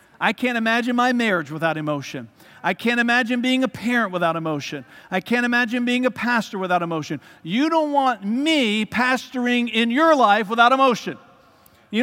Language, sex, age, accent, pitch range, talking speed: English, male, 50-69, American, 175-250 Hz, 170 wpm